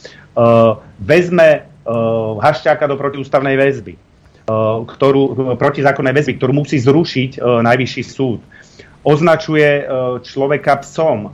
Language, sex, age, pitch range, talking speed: Slovak, male, 40-59, 120-150 Hz, 105 wpm